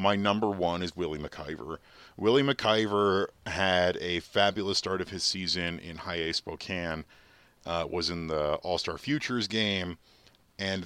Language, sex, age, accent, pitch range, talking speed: English, male, 40-59, American, 85-100 Hz, 150 wpm